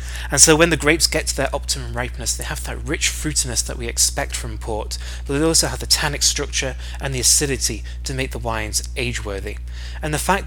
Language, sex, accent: English, male, British